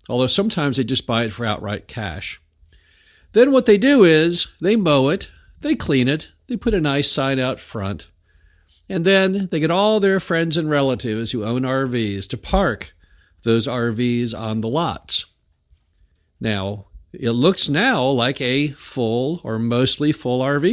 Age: 50-69